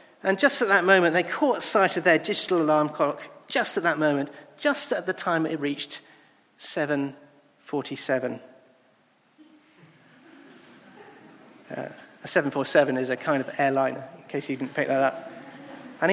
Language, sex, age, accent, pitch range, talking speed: English, male, 40-59, British, 150-220 Hz, 150 wpm